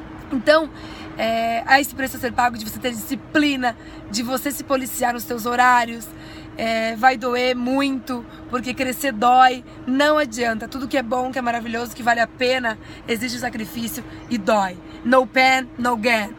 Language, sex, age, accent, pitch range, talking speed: Portuguese, female, 20-39, Brazilian, 245-275 Hz, 170 wpm